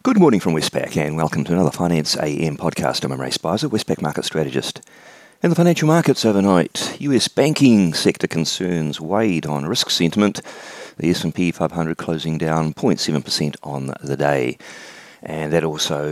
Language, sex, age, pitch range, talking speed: English, male, 40-59, 80-105 Hz, 155 wpm